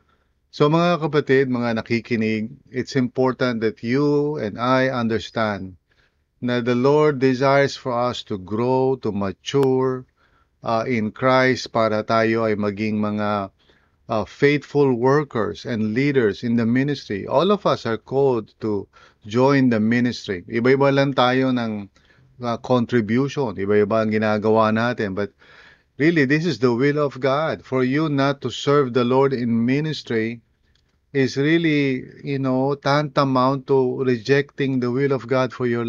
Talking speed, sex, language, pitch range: 145 wpm, male, English, 110-135 Hz